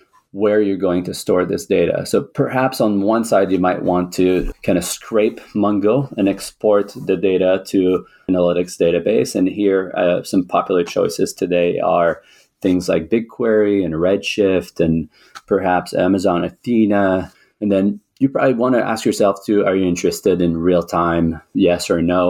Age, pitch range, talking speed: 30-49, 85-100 Hz, 165 wpm